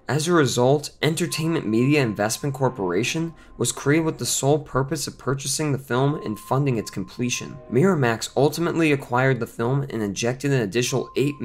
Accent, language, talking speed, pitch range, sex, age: American, English, 160 wpm, 115-145 Hz, male, 20-39